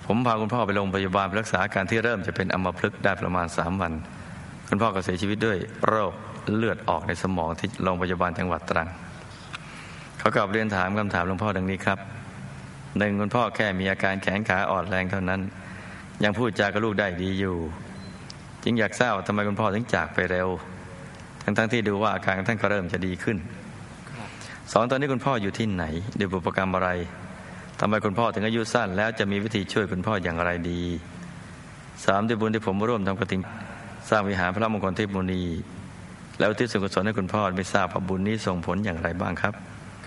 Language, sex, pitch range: Thai, male, 90-110 Hz